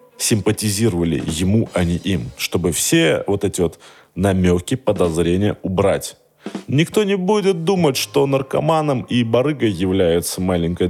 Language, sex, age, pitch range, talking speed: Russian, male, 20-39, 95-145 Hz, 125 wpm